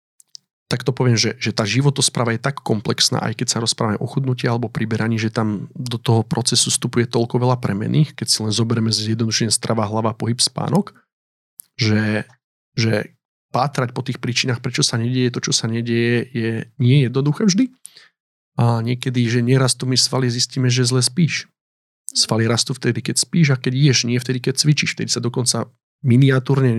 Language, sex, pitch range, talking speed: Slovak, male, 115-140 Hz, 175 wpm